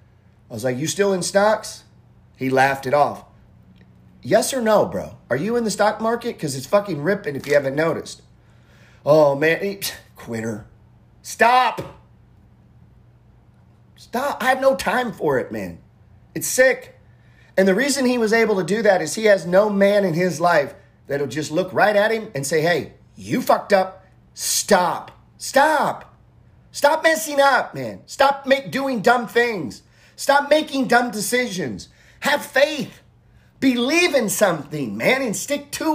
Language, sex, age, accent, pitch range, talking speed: English, male, 40-59, American, 150-235 Hz, 160 wpm